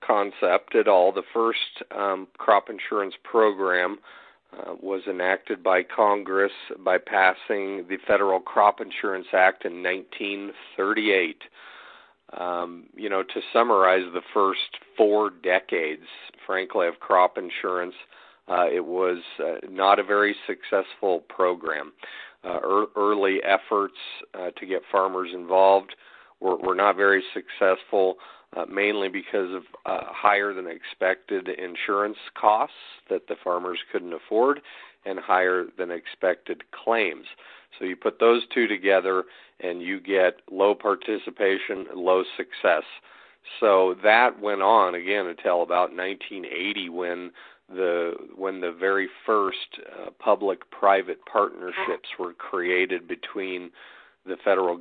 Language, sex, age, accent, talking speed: English, male, 40-59, American, 120 wpm